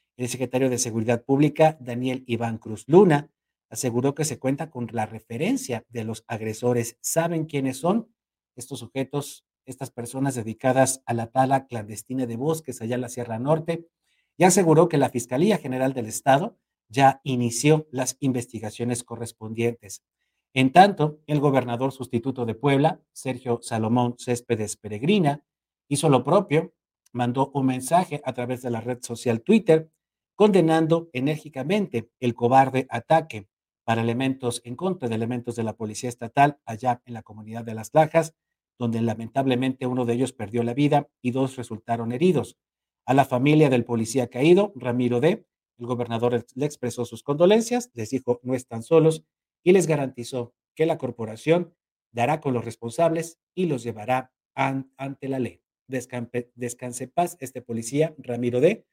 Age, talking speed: 50-69, 155 wpm